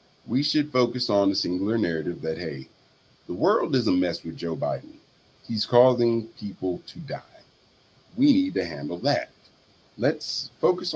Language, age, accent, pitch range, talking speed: English, 30-49, American, 90-120 Hz, 160 wpm